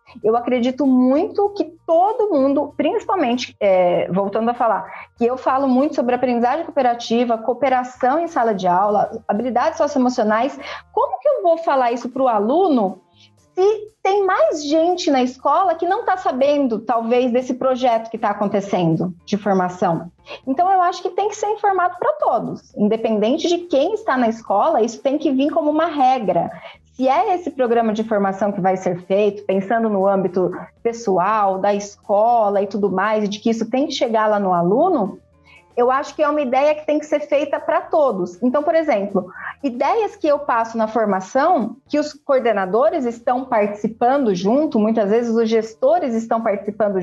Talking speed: 175 wpm